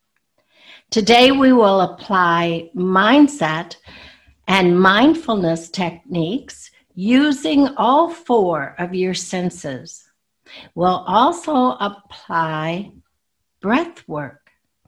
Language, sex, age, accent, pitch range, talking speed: English, female, 60-79, American, 175-255 Hz, 75 wpm